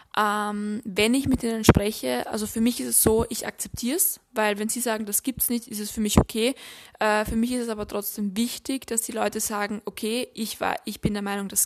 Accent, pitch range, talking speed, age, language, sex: German, 210-240 Hz, 245 wpm, 20-39, German, female